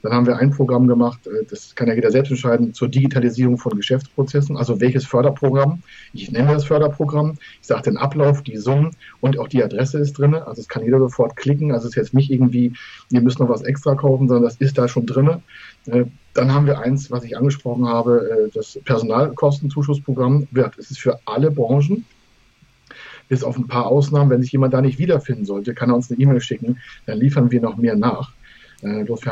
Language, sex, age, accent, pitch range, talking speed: German, male, 40-59, German, 120-145 Hz, 205 wpm